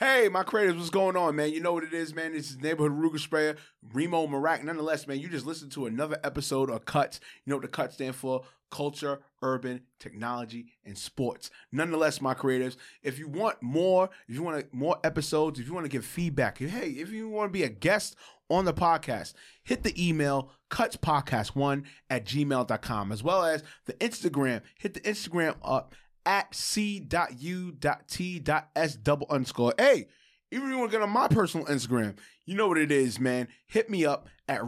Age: 20-39